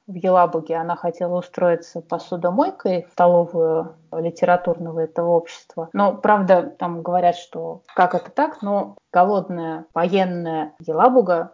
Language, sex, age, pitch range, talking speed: Russian, female, 20-39, 175-225 Hz, 120 wpm